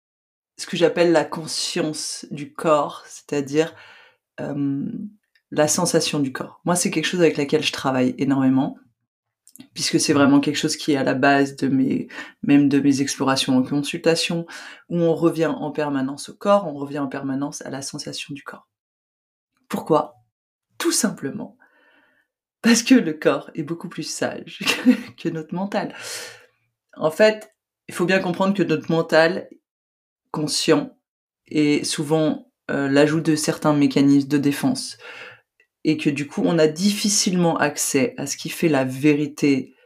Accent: French